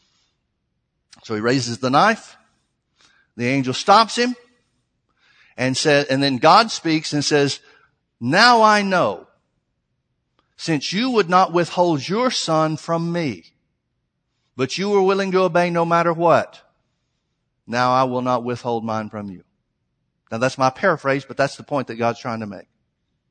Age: 60-79